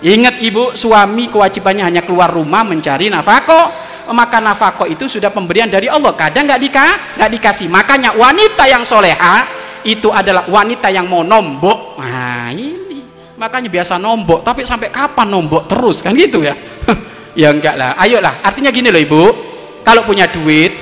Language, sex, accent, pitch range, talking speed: Indonesian, male, native, 180-275 Hz, 155 wpm